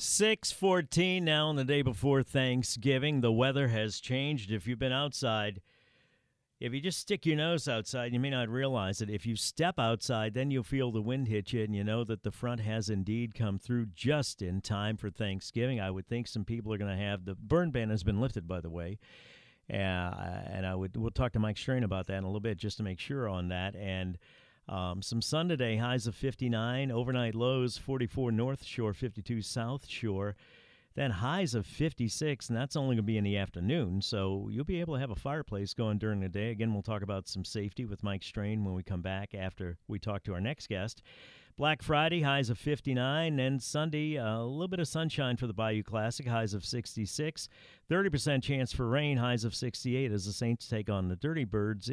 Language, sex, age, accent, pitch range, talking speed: English, male, 50-69, American, 105-135 Hz, 215 wpm